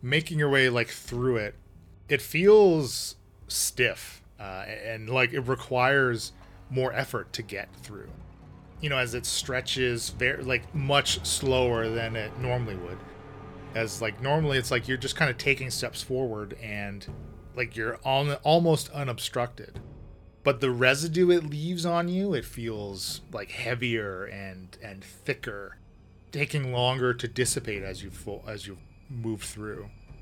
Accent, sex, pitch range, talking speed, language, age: American, male, 105-130 Hz, 145 wpm, English, 30-49